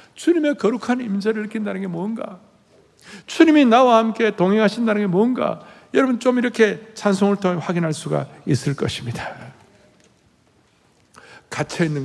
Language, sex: Korean, male